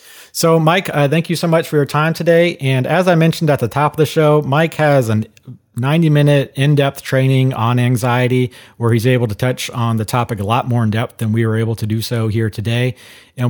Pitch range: 110-135 Hz